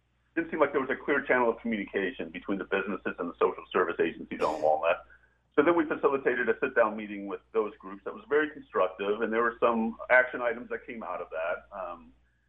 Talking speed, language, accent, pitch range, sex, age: 220 wpm, English, American, 90-135 Hz, male, 40-59